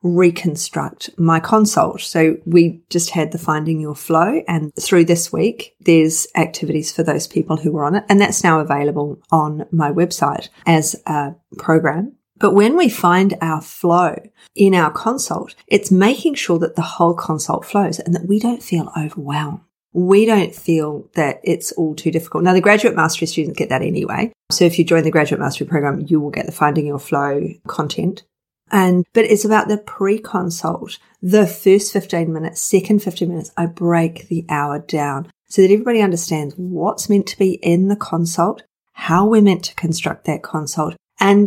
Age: 30-49